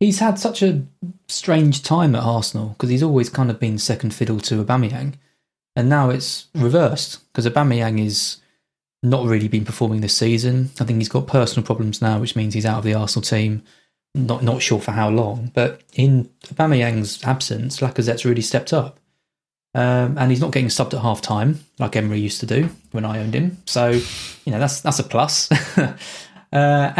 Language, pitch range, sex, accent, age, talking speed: English, 115-145 Hz, male, British, 20-39, 190 wpm